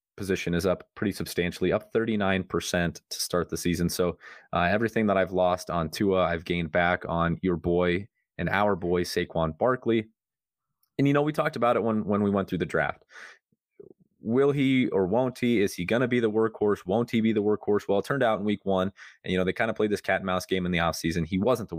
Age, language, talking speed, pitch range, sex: 30-49, English, 235 wpm, 85-105 Hz, male